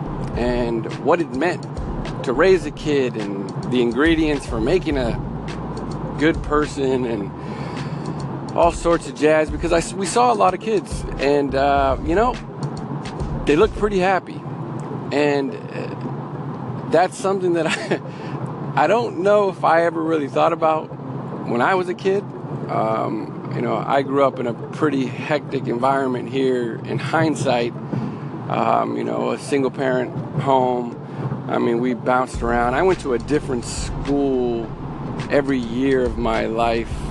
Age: 40-59